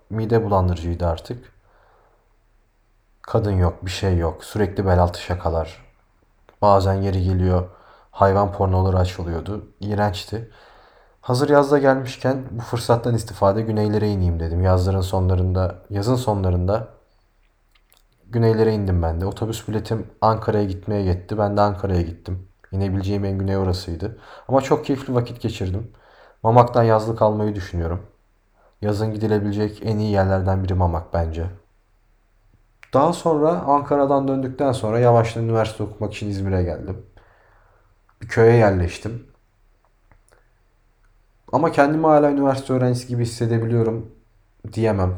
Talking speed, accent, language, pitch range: 115 wpm, native, Turkish, 95-115 Hz